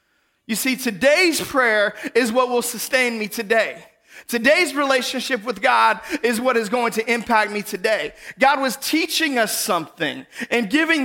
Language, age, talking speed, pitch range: English, 30-49, 160 wpm, 255-295 Hz